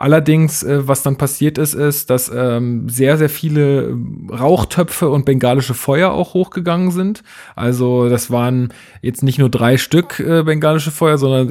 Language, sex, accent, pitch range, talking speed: German, male, German, 120-145 Hz, 145 wpm